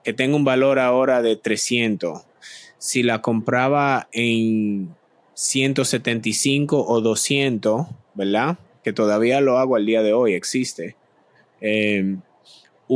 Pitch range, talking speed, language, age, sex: 105-130 Hz, 115 wpm, Spanish, 20-39, male